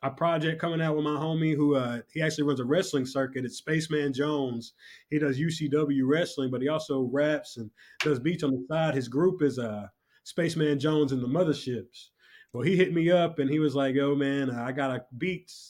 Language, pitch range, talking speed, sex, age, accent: English, 135-165 Hz, 215 wpm, male, 20-39, American